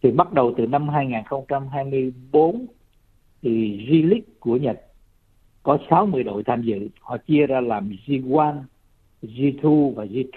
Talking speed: 145 wpm